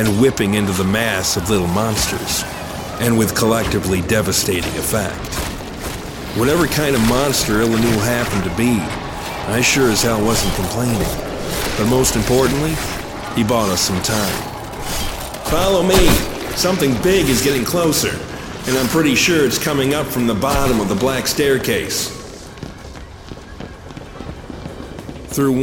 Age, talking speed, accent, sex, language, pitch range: 50-69, 135 wpm, American, male, English, 100-125 Hz